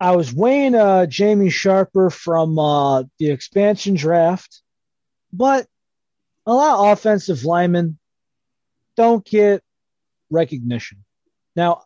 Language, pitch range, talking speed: English, 150-200 Hz, 105 wpm